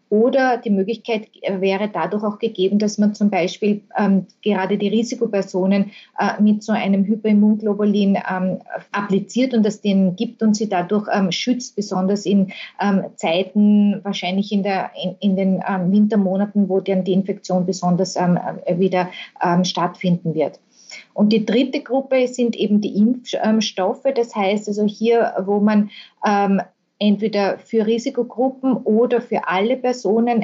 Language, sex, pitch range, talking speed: German, female, 190-220 Hz, 150 wpm